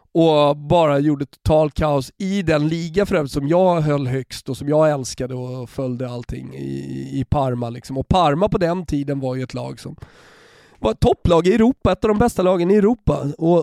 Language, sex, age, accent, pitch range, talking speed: Swedish, male, 30-49, native, 140-190 Hz, 205 wpm